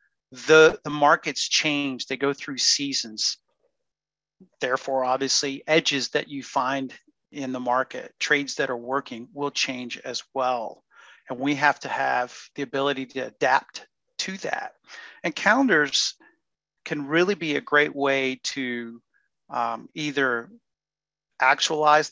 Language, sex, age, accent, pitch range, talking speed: English, male, 40-59, American, 130-150 Hz, 130 wpm